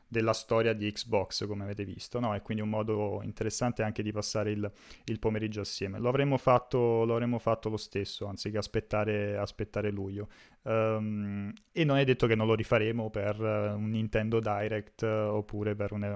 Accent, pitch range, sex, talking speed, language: native, 105-120 Hz, male, 170 wpm, Italian